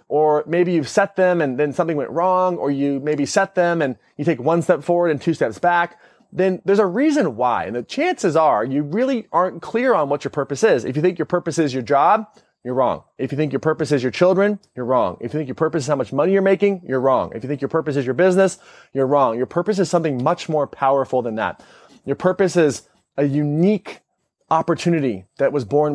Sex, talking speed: male, 240 wpm